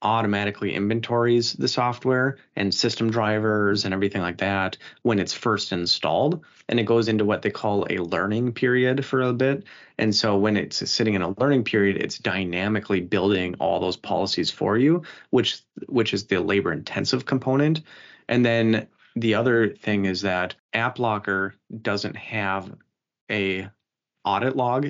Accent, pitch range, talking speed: American, 100-120 Hz, 155 wpm